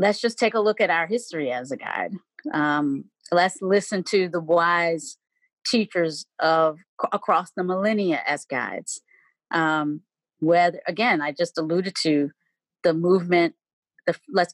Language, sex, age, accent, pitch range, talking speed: English, female, 30-49, American, 155-195 Hz, 135 wpm